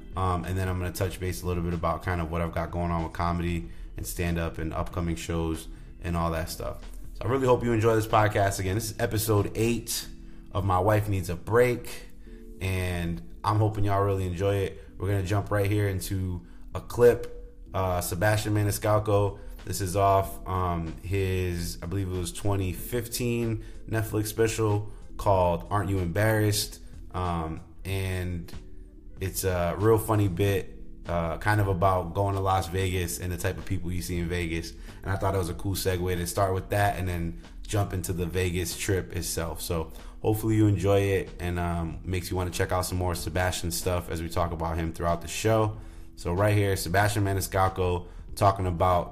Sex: male